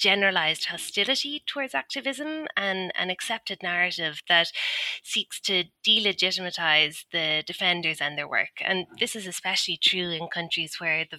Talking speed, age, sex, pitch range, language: 140 wpm, 20-39, female, 160-195 Hz, English